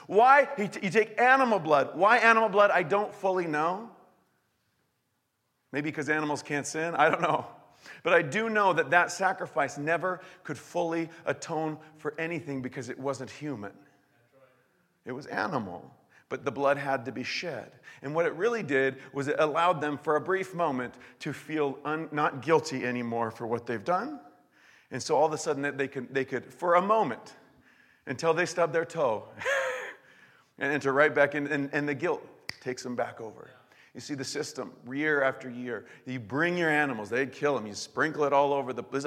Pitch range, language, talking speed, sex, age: 130-165 Hz, English, 190 wpm, male, 40-59